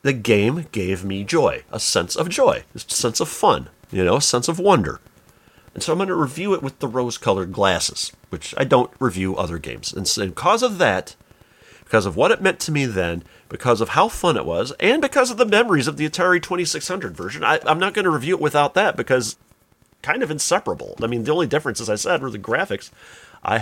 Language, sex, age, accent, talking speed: English, male, 40-59, American, 230 wpm